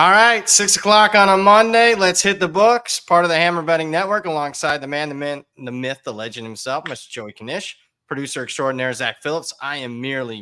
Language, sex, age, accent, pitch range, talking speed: English, male, 30-49, American, 120-150 Hz, 205 wpm